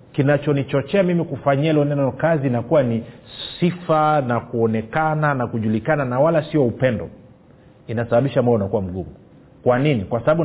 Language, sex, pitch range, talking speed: Swahili, male, 120-155 Hz, 140 wpm